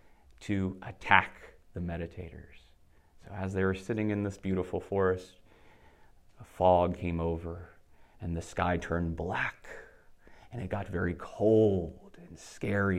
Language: English